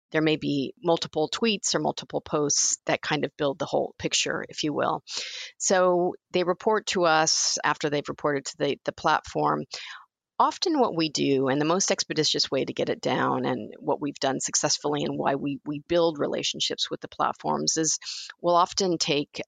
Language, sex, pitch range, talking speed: English, female, 150-180 Hz, 190 wpm